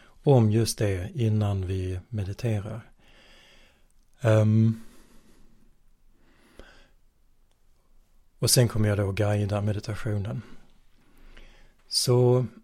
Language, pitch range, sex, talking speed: Swedish, 105-120 Hz, male, 70 wpm